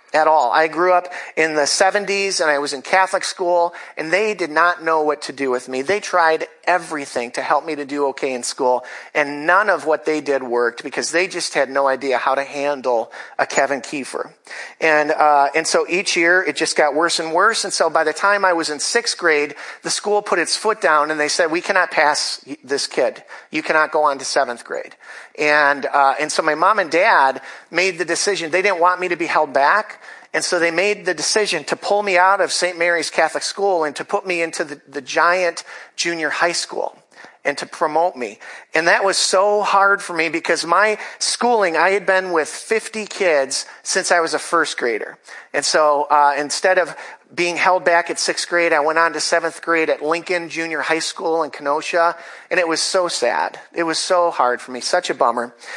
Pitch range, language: 150-180 Hz, English